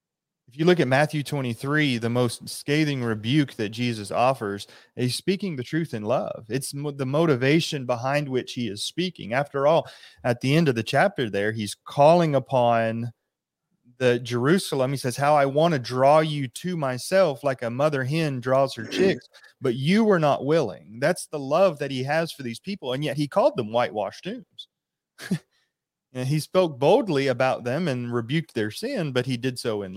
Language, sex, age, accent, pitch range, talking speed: English, male, 30-49, American, 115-145 Hz, 185 wpm